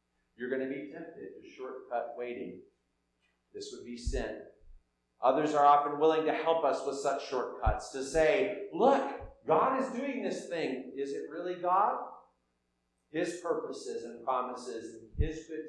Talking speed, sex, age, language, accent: 155 wpm, male, 40-59, English, American